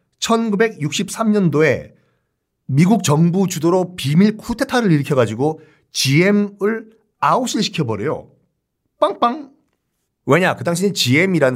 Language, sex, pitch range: Korean, male, 120-195 Hz